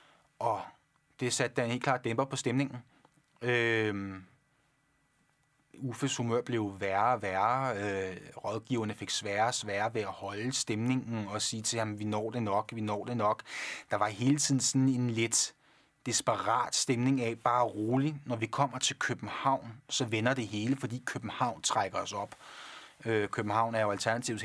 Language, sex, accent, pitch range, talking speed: Danish, male, native, 110-130 Hz, 170 wpm